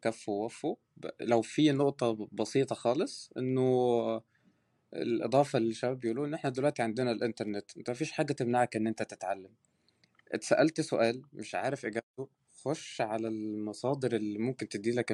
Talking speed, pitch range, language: 135 wpm, 110-140 Hz, Arabic